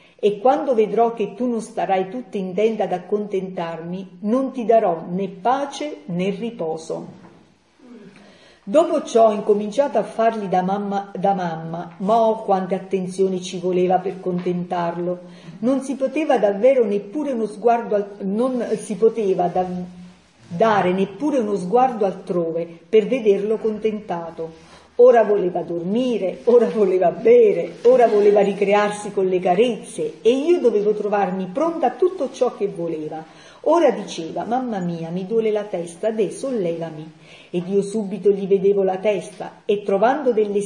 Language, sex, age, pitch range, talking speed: Italian, female, 50-69, 180-230 Hz, 145 wpm